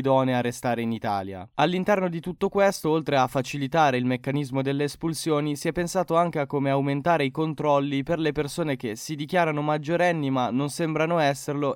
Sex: male